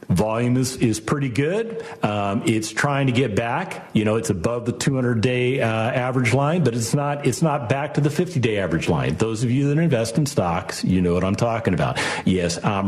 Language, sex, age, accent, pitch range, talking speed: English, male, 50-69, American, 105-135 Hz, 215 wpm